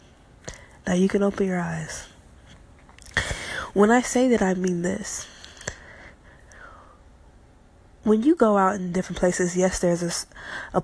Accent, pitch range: American, 175-200 Hz